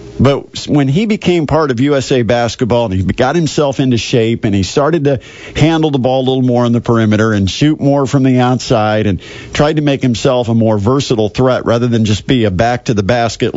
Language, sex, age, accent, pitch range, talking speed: English, male, 50-69, American, 115-150 Hz, 225 wpm